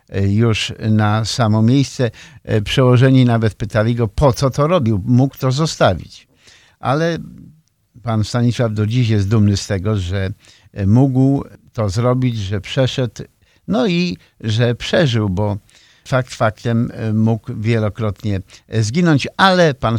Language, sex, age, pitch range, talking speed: Polish, male, 50-69, 105-130 Hz, 125 wpm